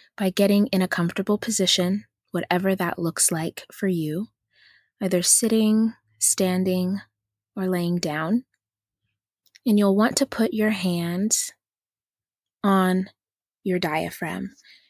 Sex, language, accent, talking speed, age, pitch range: female, English, American, 115 wpm, 20-39, 175-210 Hz